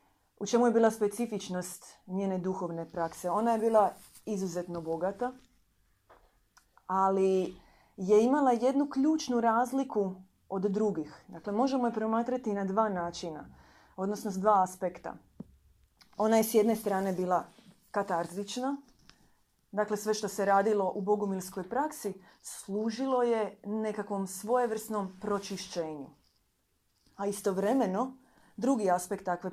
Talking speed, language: 115 wpm, Croatian